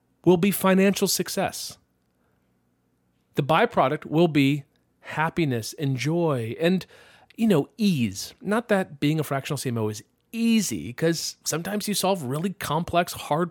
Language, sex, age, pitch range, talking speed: English, male, 40-59, 120-170 Hz, 135 wpm